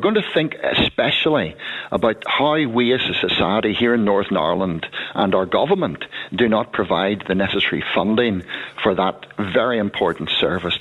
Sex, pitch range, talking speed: male, 100-130 Hz, 160 wpm